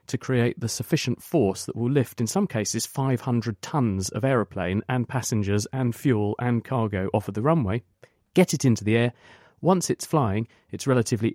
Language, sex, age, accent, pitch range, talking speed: English, male, 40-59, British, 110-130 Hz, 190 wpm